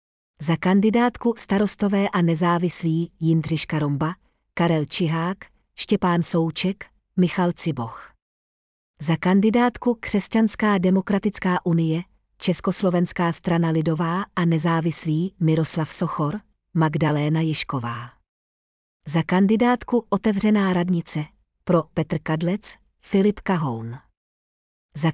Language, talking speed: Czech, 90 wpm